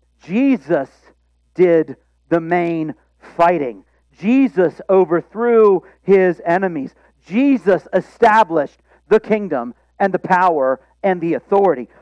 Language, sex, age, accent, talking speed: English, male, 50-69, American, 95 wpm